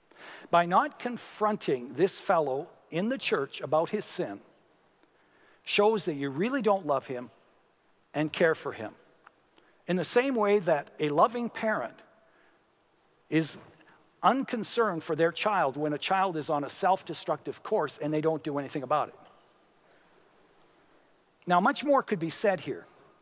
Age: 60-79